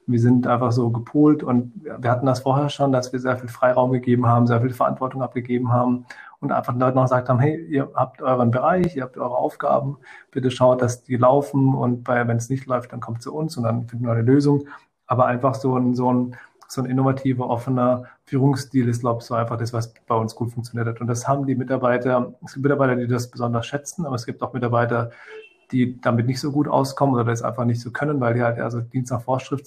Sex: male